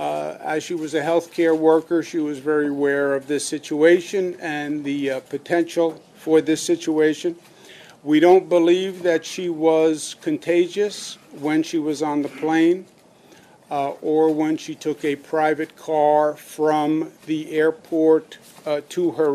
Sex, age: male, 50-69